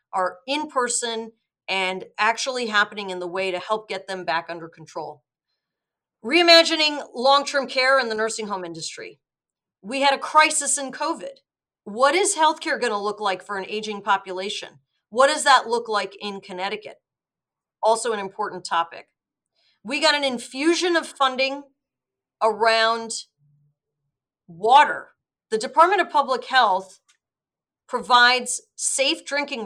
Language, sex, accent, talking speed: English, female, American, 140 wpm